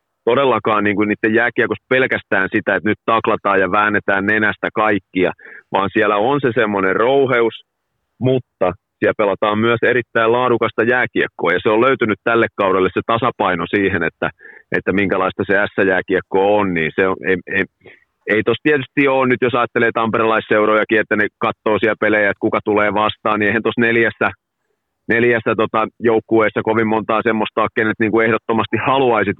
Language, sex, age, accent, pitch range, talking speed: Finnish, male, 30-49, native, 105-120 Hz, 160 wpm